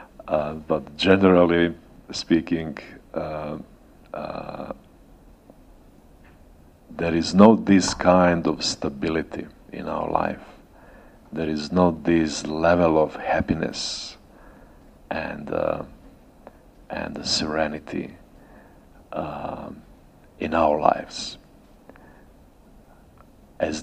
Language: English